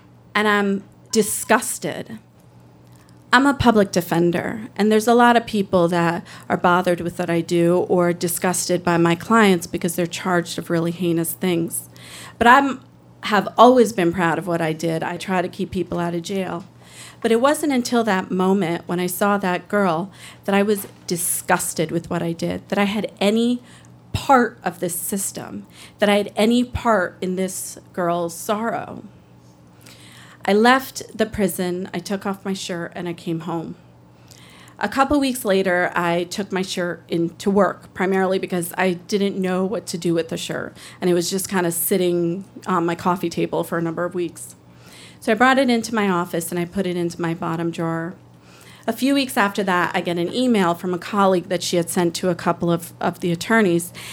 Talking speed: 195 wpm